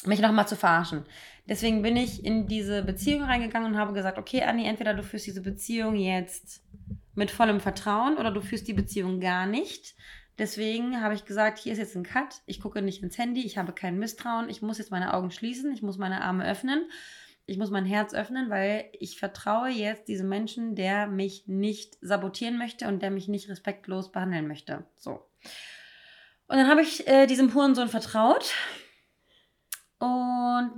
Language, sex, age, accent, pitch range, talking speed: German, female, 20-39, German, 190-230 Hz, 185 wpm